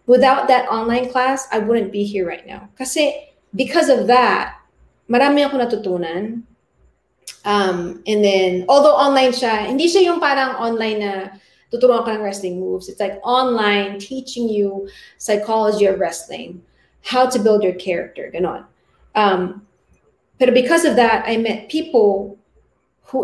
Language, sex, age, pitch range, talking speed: English, female, 30-49, 195-250 Hz, 145 wpm